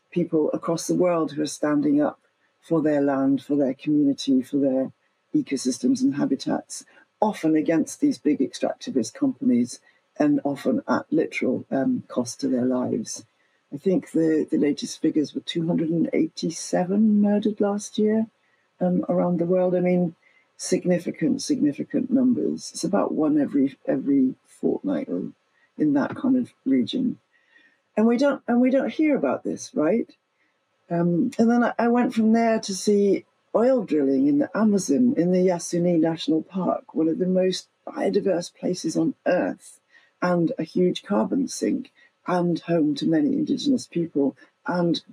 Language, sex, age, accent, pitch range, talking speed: English, female, 60-79, British, 165-270 Hz, 155 wpm